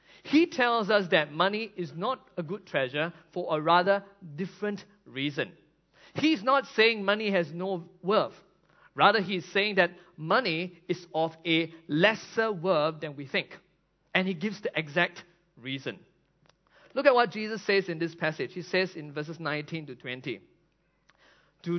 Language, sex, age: English, male, 50-69